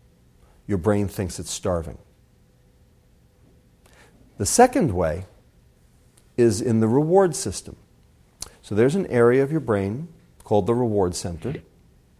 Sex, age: male, 50-69